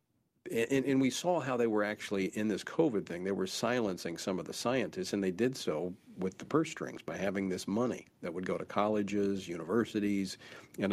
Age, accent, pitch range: 50-69, American, 95-115 Hz